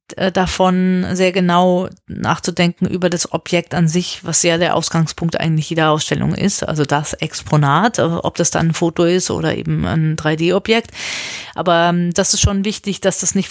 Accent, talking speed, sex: German, 170 wpm, female